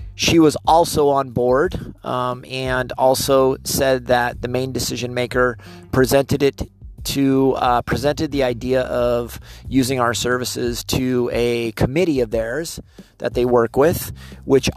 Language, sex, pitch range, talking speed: English, male, 120-135 Hz, 140 wpm